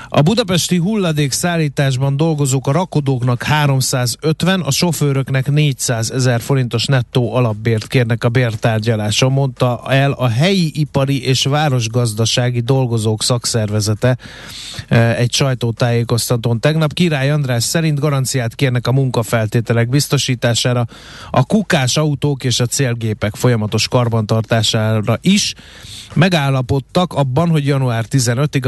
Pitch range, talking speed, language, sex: 115-140 Hz, 105 wpm, Hungarian, male